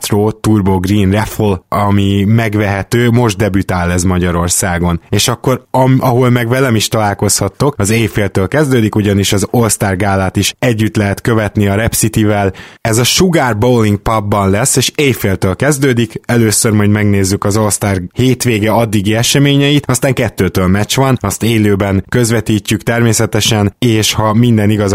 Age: 20-39